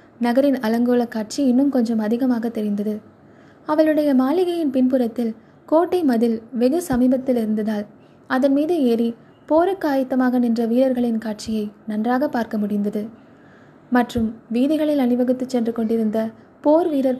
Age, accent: 20-39, native